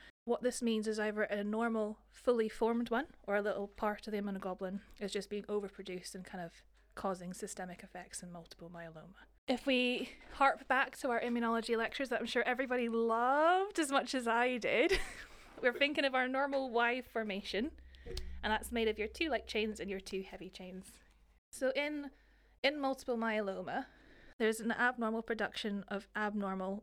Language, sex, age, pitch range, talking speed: English, female, 20-39, 195-235 Hz, 175 wpm